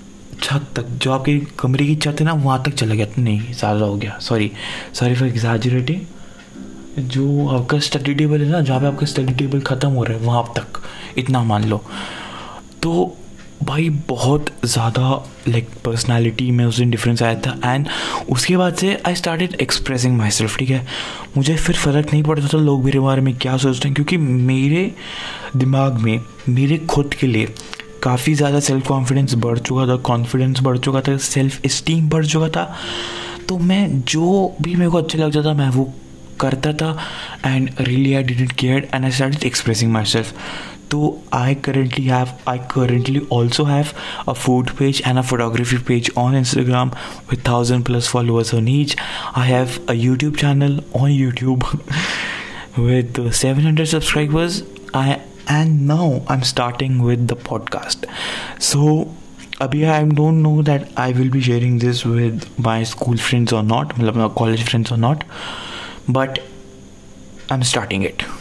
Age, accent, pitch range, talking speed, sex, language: 20-39, native, 120-145 Hz, 170 wpm, male, Hindi